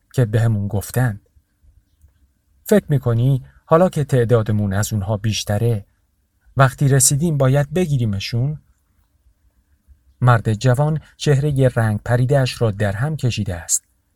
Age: 40-59